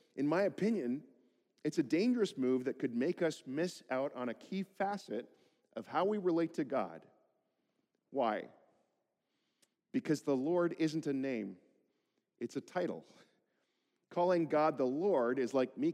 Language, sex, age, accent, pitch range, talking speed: English, male, 40-59, American, 135-180 Hz, 150 wpm